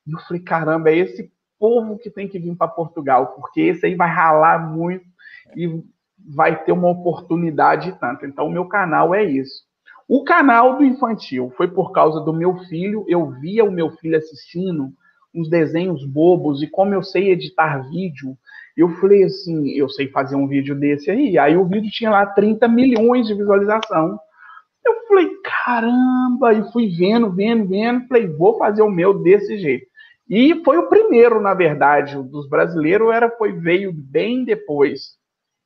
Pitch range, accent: 160-225 Hz, Brazilian